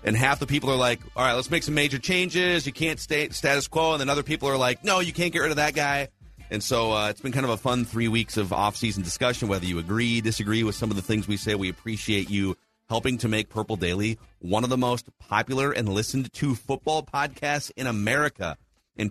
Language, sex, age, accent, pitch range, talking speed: English, male, 40-59, American, 100-135 Hz, 240 wpm